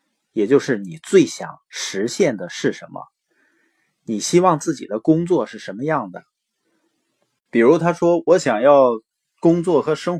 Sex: male